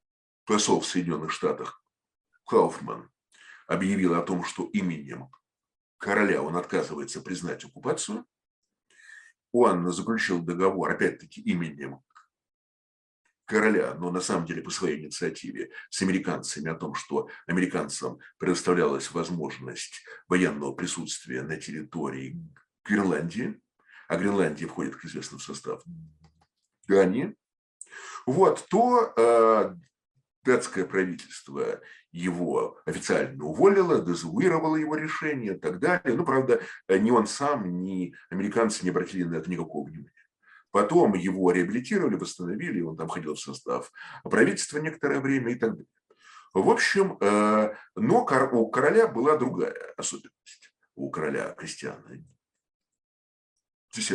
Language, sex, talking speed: Russian, male, 110 wpm